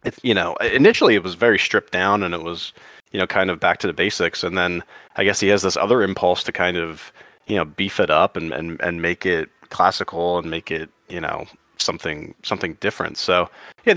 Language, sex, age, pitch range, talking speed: English, male, 30-49, 90-110 Hz, 230 wpm